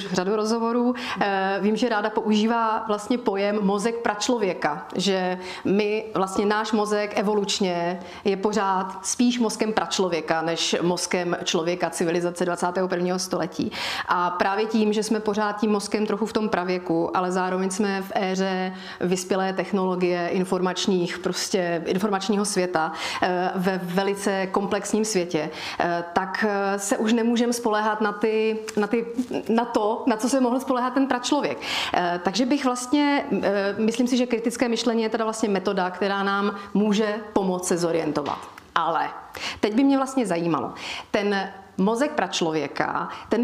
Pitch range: 185-225 Hz